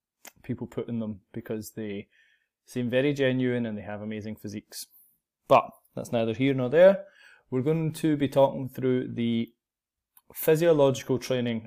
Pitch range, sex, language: 115-140 Hz, male, English